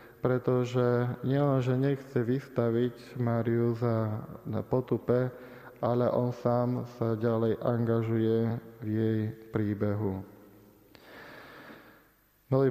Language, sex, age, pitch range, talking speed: Slovak, male, 20-39, 115-125 Hz, 85 wpm